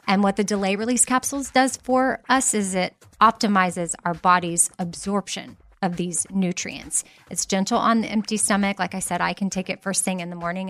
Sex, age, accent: female, 30-49, American